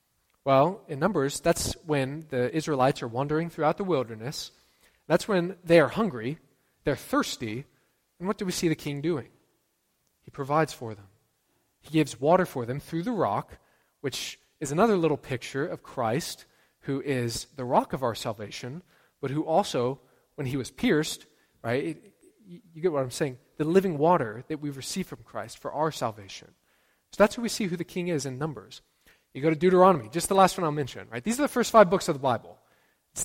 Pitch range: 130-175 Hz